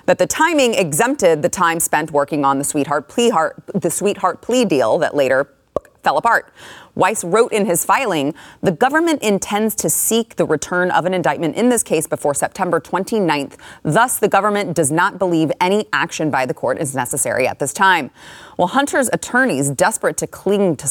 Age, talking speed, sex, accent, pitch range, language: 30-49, 180 wpm, female, American, 155-215 Hz, English